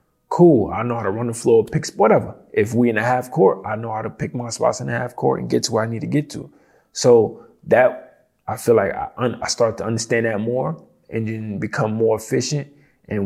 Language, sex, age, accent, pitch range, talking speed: English, male, 20-39, American, 100-120 Hz, 245 wpm